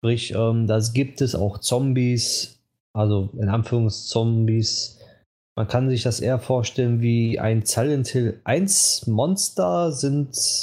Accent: German